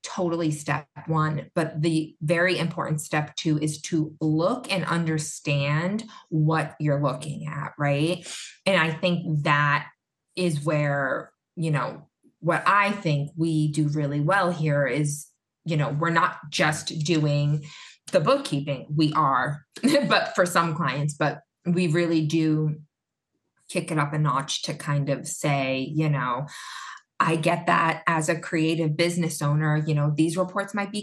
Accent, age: American, 20-39